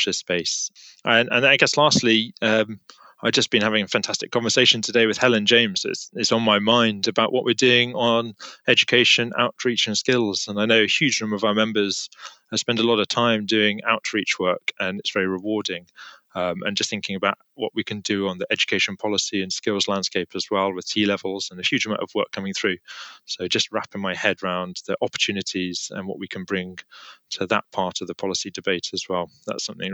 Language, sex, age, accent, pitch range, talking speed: English, male, 20-39, British, 100-115 Hz, 210 wpm